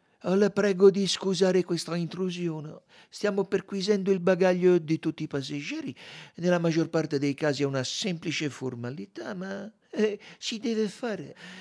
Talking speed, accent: 145 wpm, native